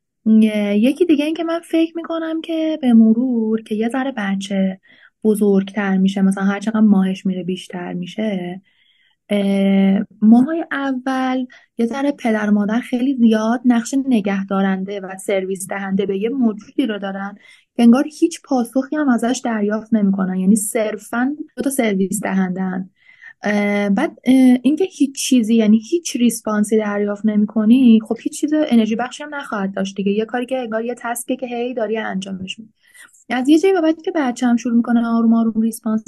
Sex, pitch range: female, 205-255 Hz